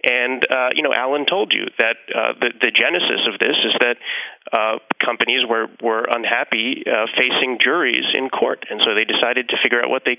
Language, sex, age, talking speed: English, male, 30-49, 205 wpm